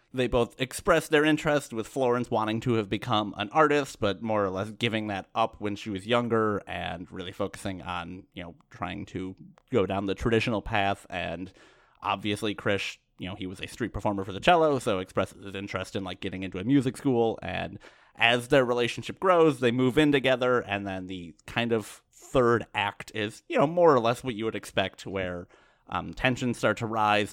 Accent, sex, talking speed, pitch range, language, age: American, male, 205 wpm, 95-120 Hz, English, 30-49